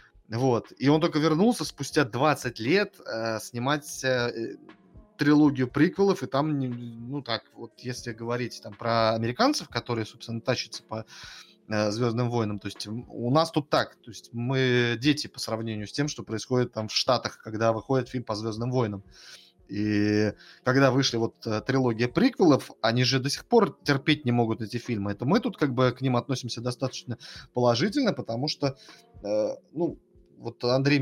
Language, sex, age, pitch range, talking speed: Russian, male, 20-39, 115-145 Hz, 170 wpm